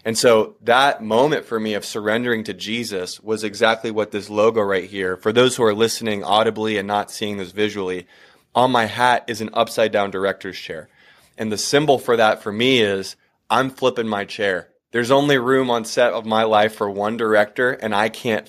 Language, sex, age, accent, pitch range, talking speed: English, male, 20-39, American, 105-125 Hz, 205 wpm